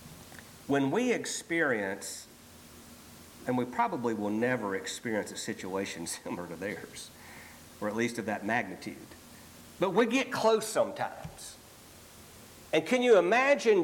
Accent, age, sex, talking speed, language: American, 50-69, male, 125 wpm, English